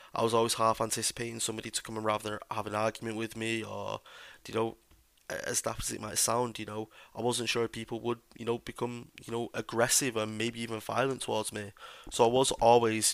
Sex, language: male, English